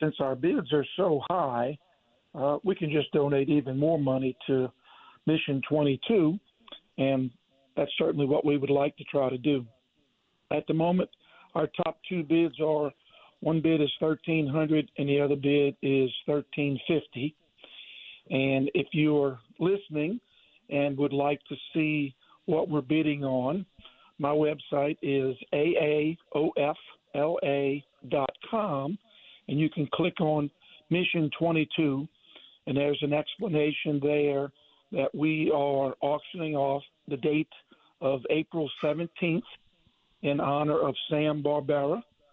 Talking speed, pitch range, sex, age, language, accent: 130 wpm, 140-160 Hz, male, 50-69, English, American